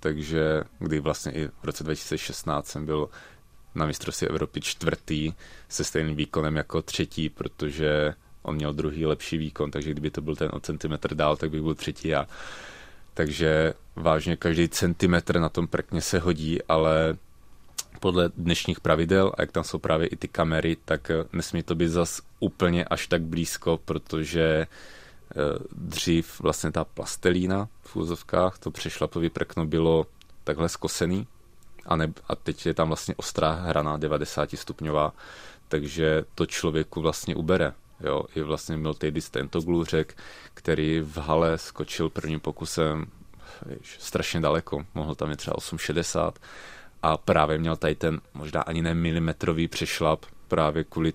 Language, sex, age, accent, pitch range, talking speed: Czech, male, 30-49, native, 75-85 Hz, 150 wpm